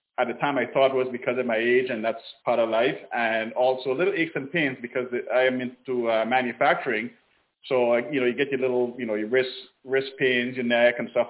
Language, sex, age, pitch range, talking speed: English, male, 30-49, 125-145 Hz, 240 wpm